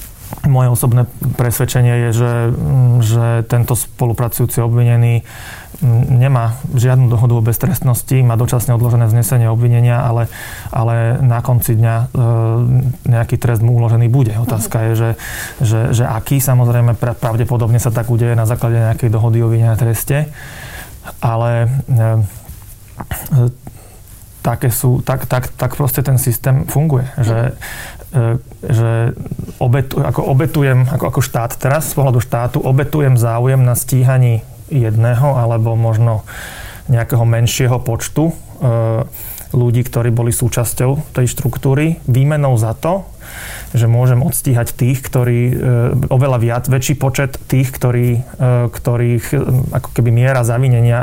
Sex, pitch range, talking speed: male, 115-130 Hz, 130 wpm